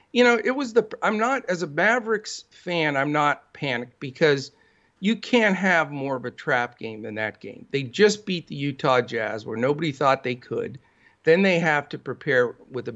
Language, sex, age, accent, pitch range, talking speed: English, male, 50-69, American, 130-185 Hz, 205 wpm